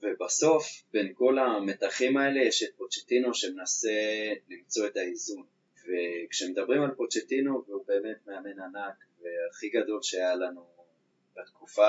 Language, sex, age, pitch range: Hebrew, male, 20-39, 95-130 Hz